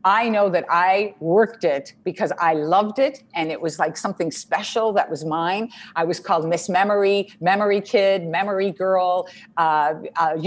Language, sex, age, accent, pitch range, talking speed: English, female, 50-69, American, 170-215 Hz, 165 wpm